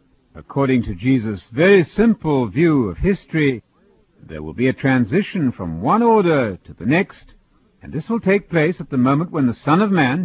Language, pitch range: English, 125-170 Hz